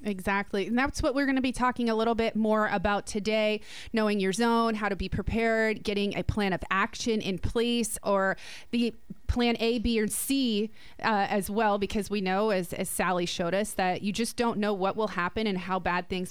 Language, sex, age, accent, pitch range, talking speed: English, female, 30-49, American, 195-230 Hz, 215 wpm